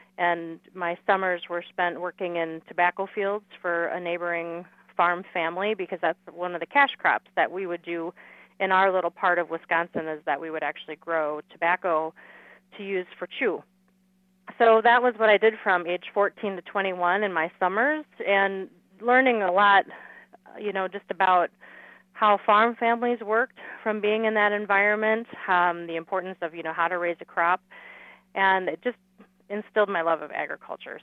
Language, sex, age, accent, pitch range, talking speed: English, female, 30-49, American, 170-205 Hz, 180 wpm